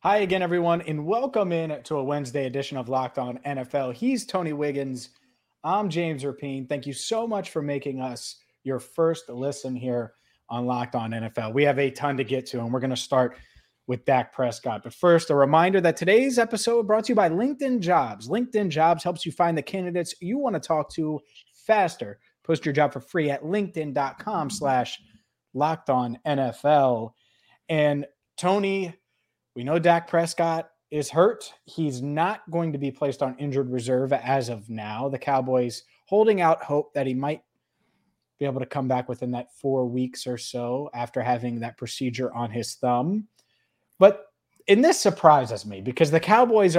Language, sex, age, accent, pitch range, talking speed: English, male, 30-49, American, 125-165 Hz, 175 wpm